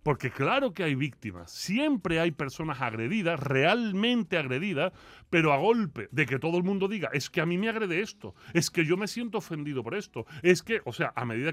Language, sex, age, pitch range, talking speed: Spanish, female, 30-49, 135-180 Hz, 215 wpm